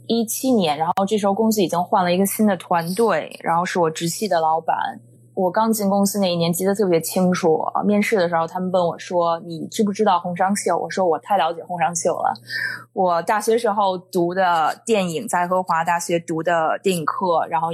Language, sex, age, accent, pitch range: Chinese, female, 20-39, native, 165-200 Hz